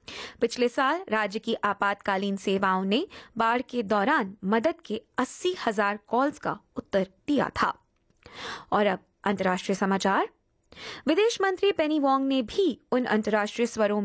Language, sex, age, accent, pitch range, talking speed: Hindi, female, 20-39, native, 205-270 Hz, 135 wpm